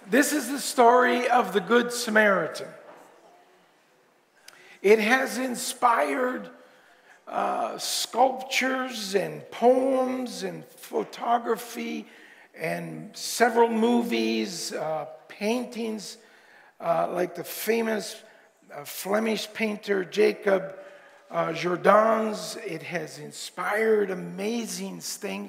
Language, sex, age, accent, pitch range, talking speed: English, male, 50-69, American, 180-225 Hz, 85 wpm